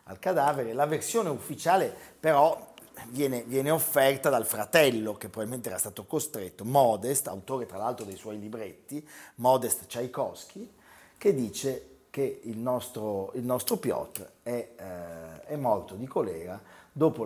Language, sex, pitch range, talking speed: Italian, male, 105-140 Hz, 140 wpm